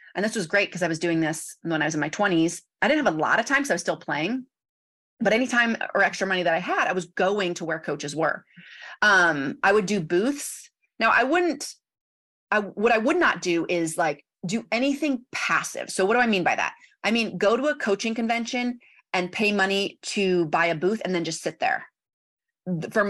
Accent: American